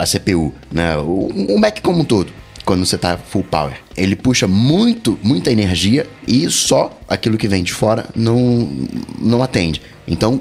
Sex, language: male, Portuguese